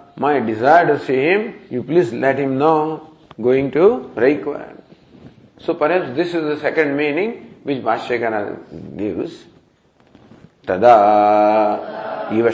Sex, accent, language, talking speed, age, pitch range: male, Indian, English, 120 wpm, 50-69, 110-160 Hz